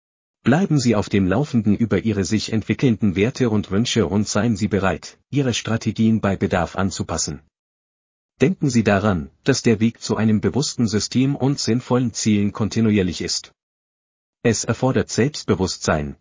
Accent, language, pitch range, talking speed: German, German, 95-125 Hz, 145 wpm